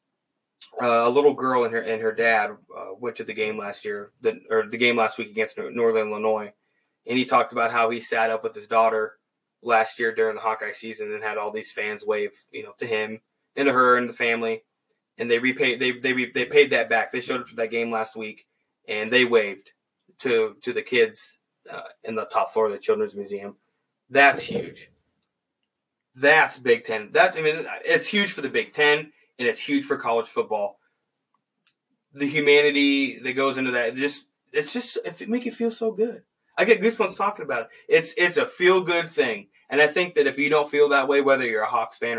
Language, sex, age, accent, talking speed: English, male, 20-39, American, 220 wpm